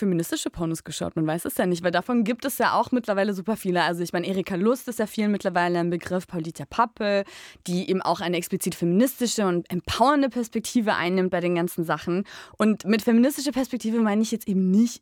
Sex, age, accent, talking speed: female, 20-39, German, 210 wpm